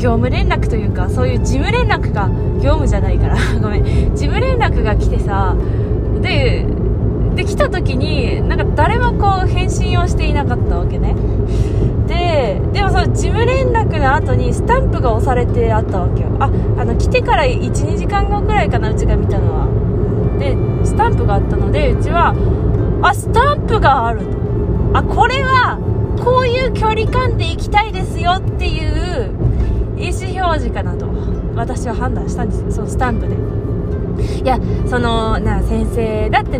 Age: 20-39